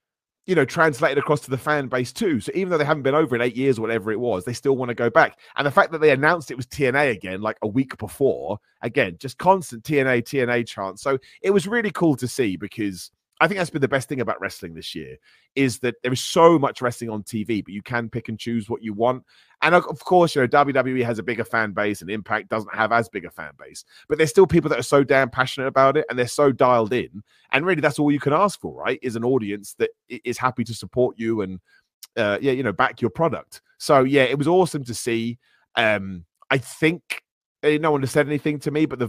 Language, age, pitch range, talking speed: English, 30-49, 115-150 Hz, 260 wpm